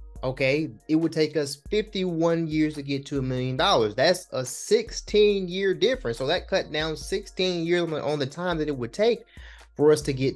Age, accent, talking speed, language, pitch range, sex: 20-39, American, 195 wpm, English, 130-165 Hz, male